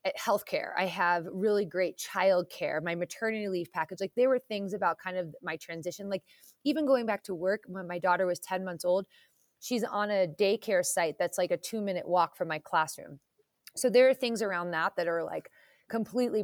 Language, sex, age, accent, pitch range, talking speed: English, female, 20-39, American, 175-215 Hz, 210 wpm